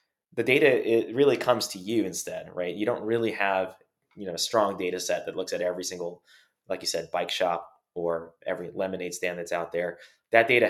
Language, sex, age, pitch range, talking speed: English, male, 20-39, 90-115 Hz, 215 wpm